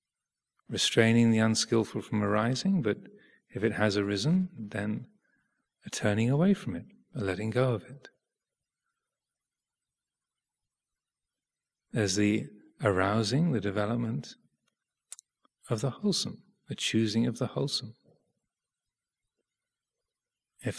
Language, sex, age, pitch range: English, male, 40-59, 105-130 Hz